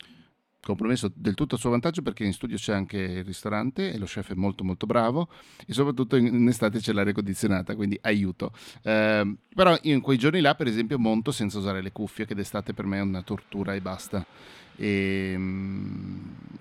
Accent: native